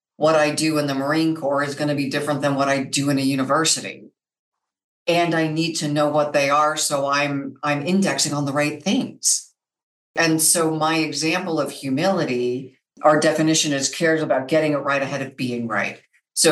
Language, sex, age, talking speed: English, female, 50-69, 195 wpm